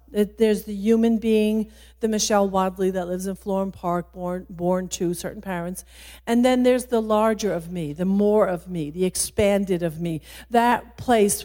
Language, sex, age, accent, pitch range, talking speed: English, female, 50-69, American, 185-265 Hz, 180 wpm